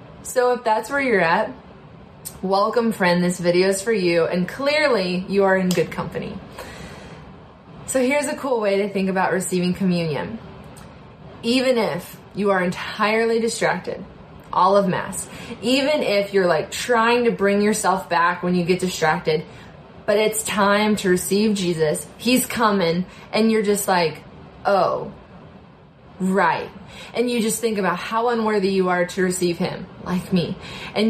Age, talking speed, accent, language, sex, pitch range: 20-39, 155 wpm, American, English, female, 180-215 Hz